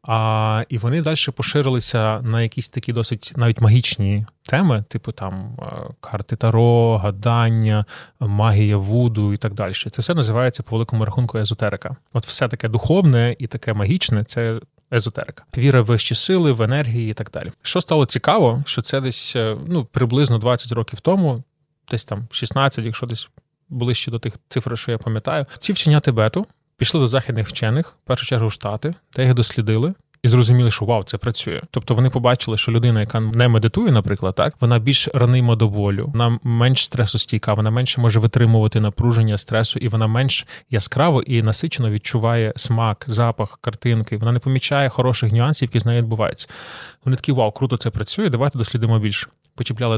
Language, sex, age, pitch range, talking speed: Ukrainian, male, 20-39, 115-130 Hz, 175 wpm